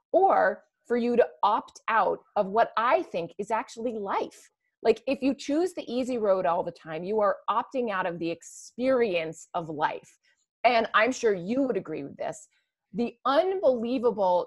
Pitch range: 170-245 Hz